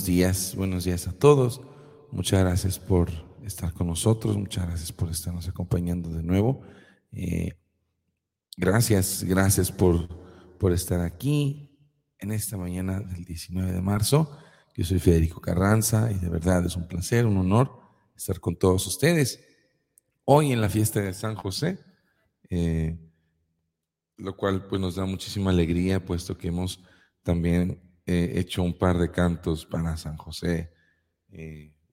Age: 40-59